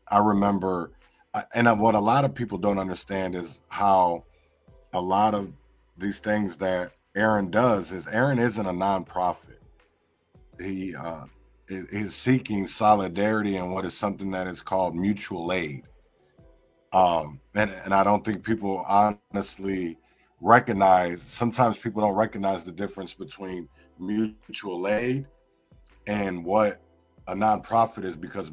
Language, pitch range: English, 90-110 Hz